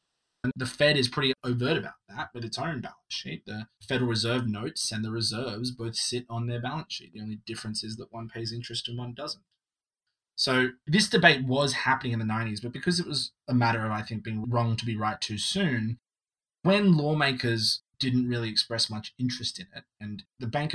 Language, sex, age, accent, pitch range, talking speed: English, male, 20-39, Australian, 110-130 Hz, 210 wpm